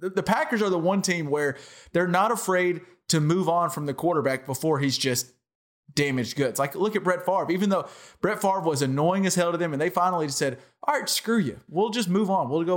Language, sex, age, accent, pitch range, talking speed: English, male, 30-49, American, 135-190 Hz, 240 wpm